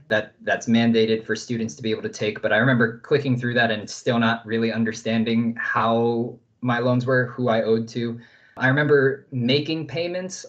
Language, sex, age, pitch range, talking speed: English, male, 20-39, 115-130 Hz, 190 wpm